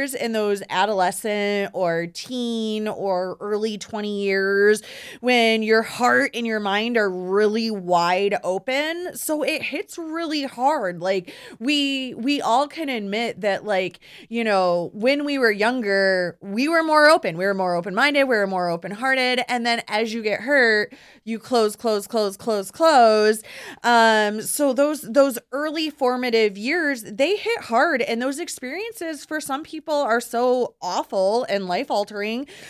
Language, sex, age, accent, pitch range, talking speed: English, female, 20-39, American, 205-280 Hz, 155 wpm